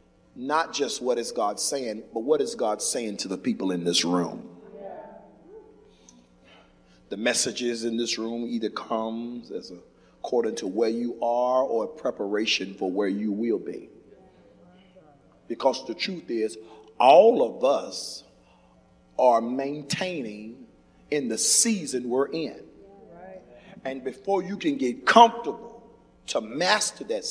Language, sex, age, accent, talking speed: English, male, 40-59, American, 135 wpm